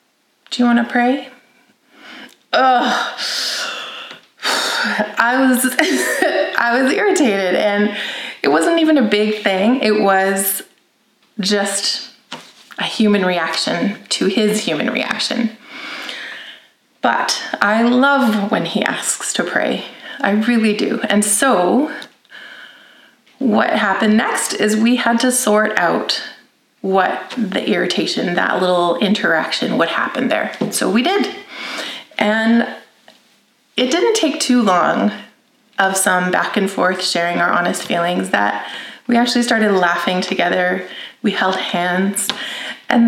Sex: female